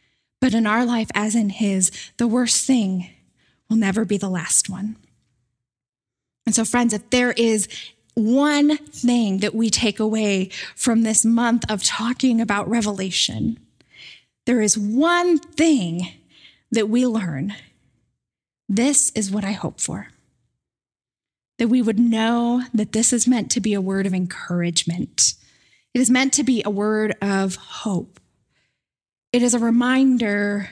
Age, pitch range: 10-29, 190-245 Hz